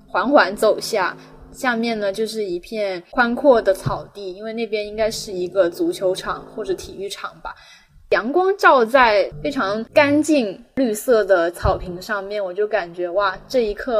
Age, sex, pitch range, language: 20-39, female, 190-250 Hz, Chinese